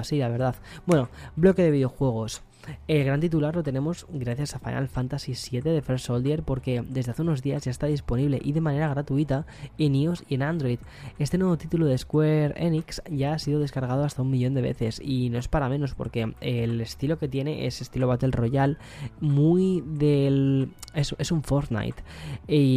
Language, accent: Spanish, Spanish